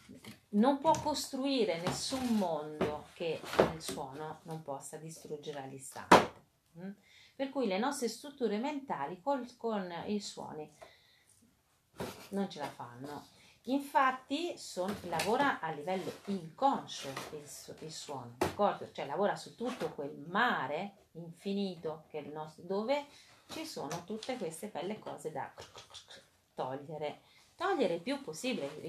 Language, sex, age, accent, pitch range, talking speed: Italian, female, 40-59, native, 160-250 Hz, 110 wpm